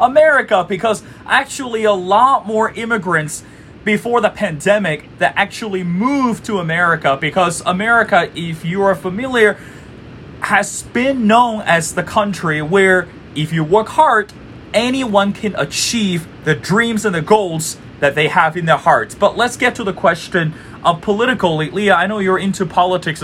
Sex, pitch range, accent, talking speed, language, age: male, 160-220 Hz, American, 150 wpm, English, 30-49